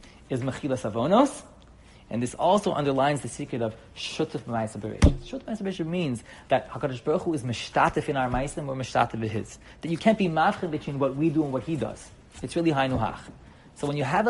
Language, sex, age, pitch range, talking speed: English, male, 30-49, 115-150 Hz, 180 wpm